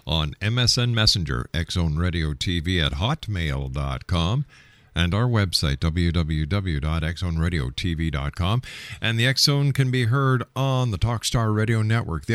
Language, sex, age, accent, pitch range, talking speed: English, male, 50-69, American, 85-125 Hz, 115 wpm